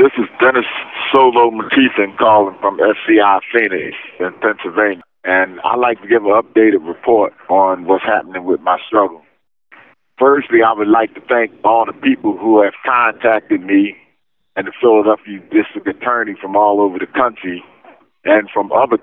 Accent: American